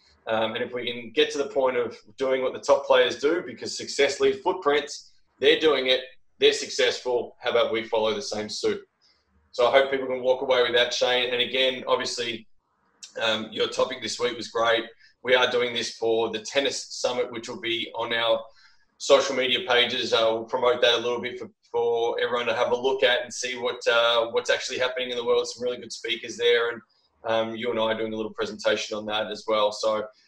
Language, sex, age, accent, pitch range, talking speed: English, male, 20-39, Australian, 115-150 Hz, 225 wpm